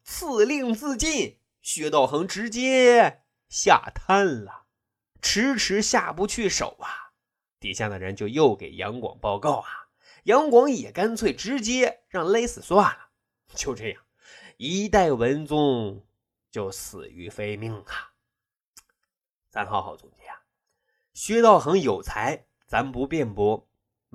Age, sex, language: 20-39, male, Chinese